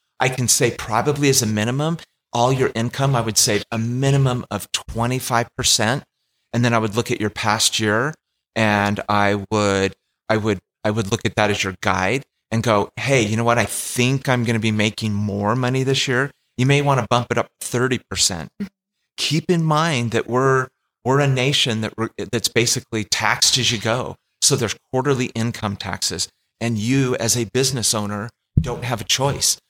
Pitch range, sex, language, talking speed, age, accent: 100-125 Hz, male, English, 190 wpm, 30-49, American